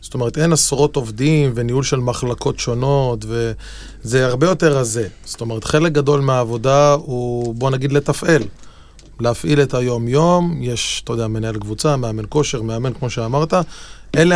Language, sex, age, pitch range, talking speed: Hebrew, male, 20-39, 120-140 Hz, 150 wpm